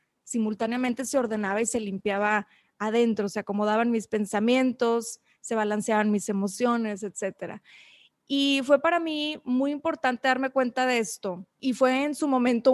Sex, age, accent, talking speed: female, 20-39, Mexican, 145 wpm